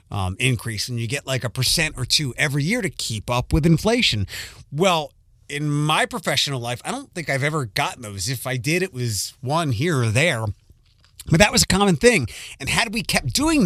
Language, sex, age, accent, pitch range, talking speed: English, male, 30-49, American, 120-175 Hz, 215 wpm